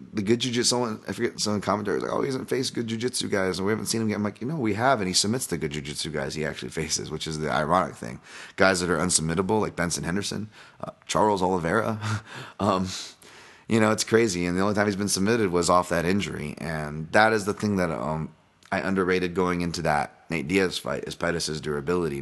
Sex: male